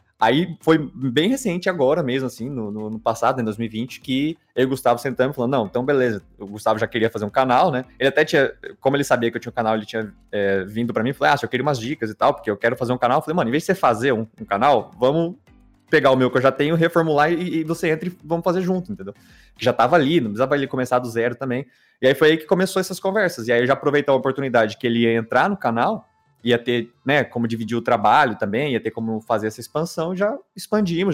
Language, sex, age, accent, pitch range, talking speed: Portuguese, male, 20-39, Brazilian, 115-160 Hz, 270 wpm